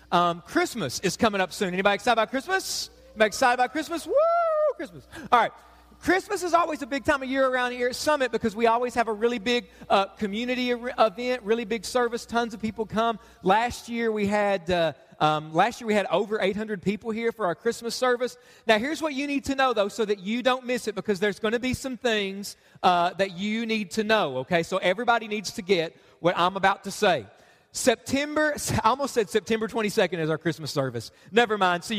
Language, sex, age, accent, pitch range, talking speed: English, male, 40-59, American, 195-250 Hz, 220 wpm